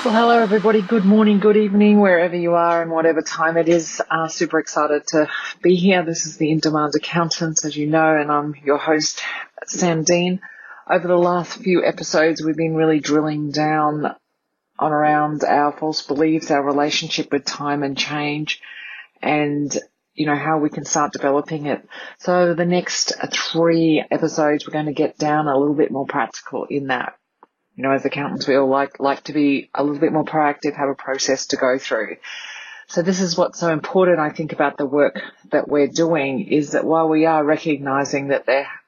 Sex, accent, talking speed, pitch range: female, Australian, 195 wpm, 145-170 Hz